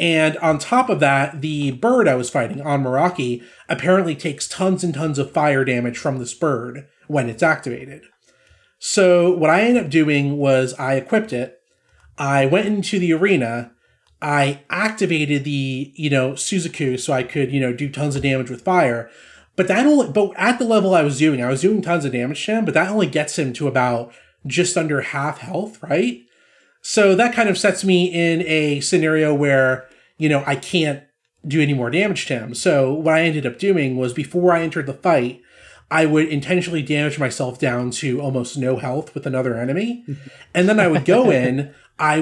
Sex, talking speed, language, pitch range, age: male, 195 wpm, English, 135-180 Hz, 30-49